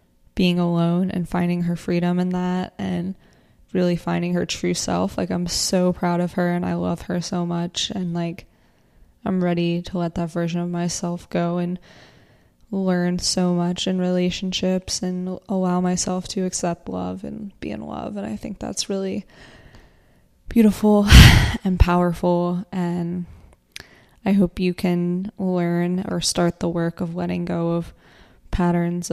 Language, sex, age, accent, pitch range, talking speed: English, female, 20-39, American, 170-190 Hz, 155 wpm